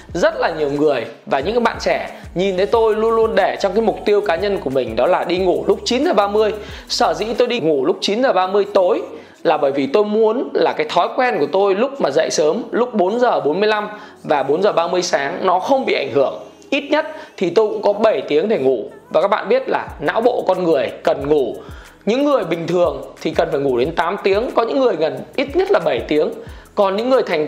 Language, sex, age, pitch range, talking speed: Vietnamese, male, 20-39, 185-255 Hz, 235 wpm